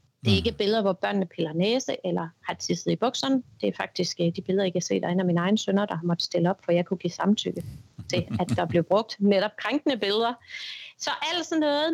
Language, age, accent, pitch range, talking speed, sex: Danish, 30-49, native, 180-245 Hz, 240 wpm, female